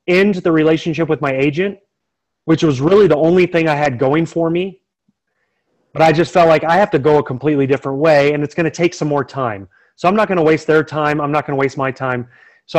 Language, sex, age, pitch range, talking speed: English, male, 30-49, 135-165 Hz, 255 wpm